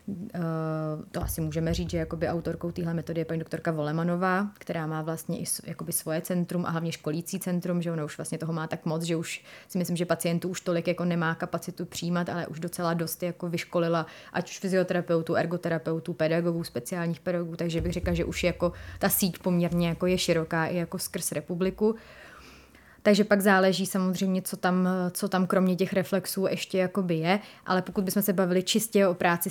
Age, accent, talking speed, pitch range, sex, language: 20-39, native, 190 wpm, 165-185 Hz, female, Czech